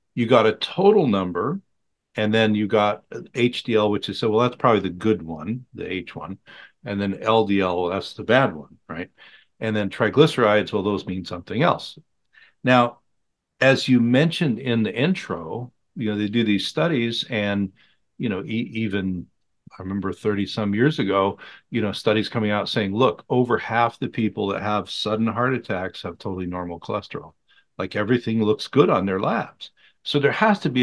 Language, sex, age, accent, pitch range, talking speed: English, male, 50-69, American, 95-120 Hz, 185 wpm